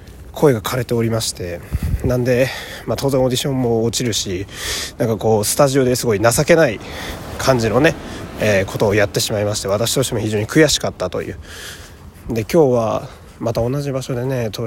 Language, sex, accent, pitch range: Japanese, male, native, 100-135 Hz